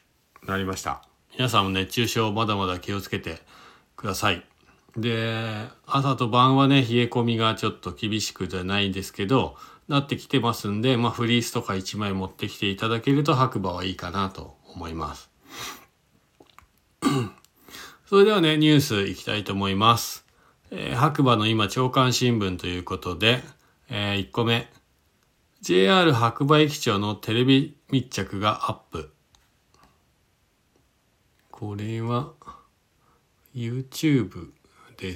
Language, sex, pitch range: Japanese, male, 95-130 Hz